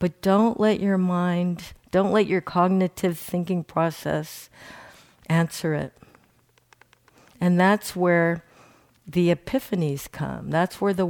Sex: female